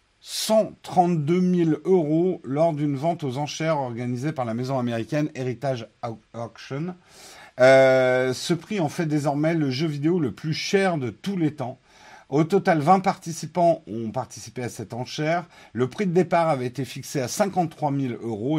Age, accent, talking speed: 50-69, French, 170 wpm